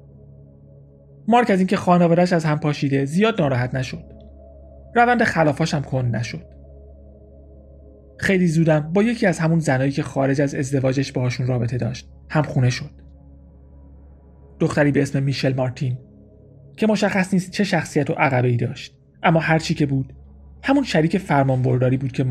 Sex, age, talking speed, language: male, 30-49, 150 wpm, Persian